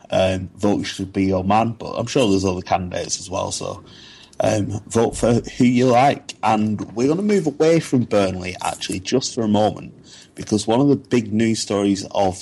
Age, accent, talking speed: 30-49, British, 205 wpm